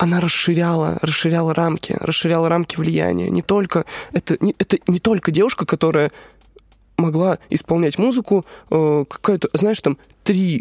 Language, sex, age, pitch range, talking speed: Russian, male, 20-39, 155-180 Hz, 130 wpm